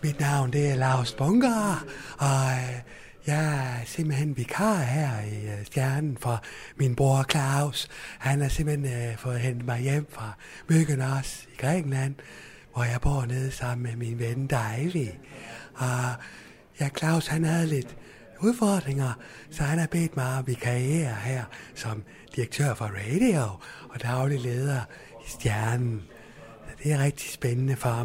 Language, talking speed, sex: Danish, 145 wpm, male